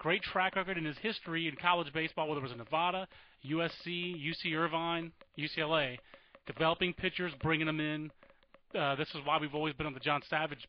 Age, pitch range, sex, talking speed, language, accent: 30-49, 150-175 Hz, male, 185 wpm, English, American